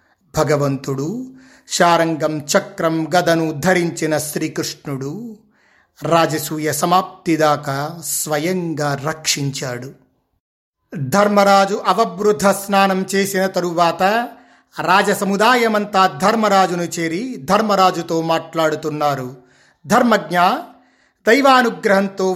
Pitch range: 165-210 Hz